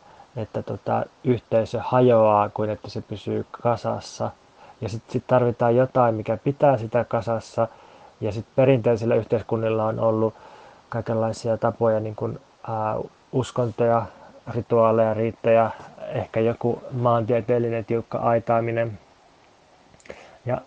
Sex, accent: male, native